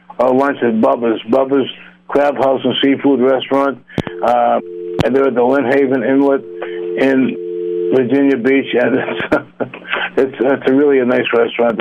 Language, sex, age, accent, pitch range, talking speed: English, male, 60-79, American, 120-140 Hz, 155 wpm